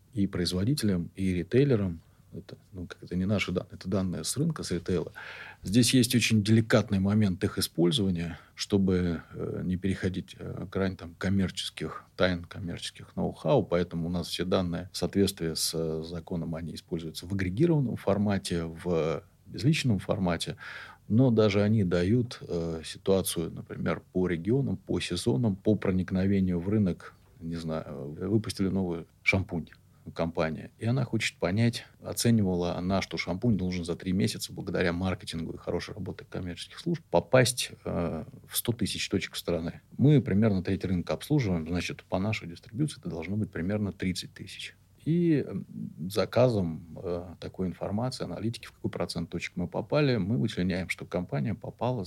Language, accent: Russian, native